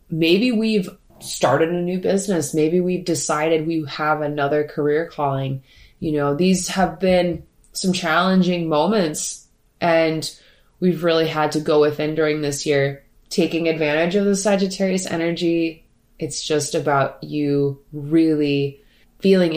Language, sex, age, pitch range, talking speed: English, female, 20-39, 150-180 Hz, 135 wpm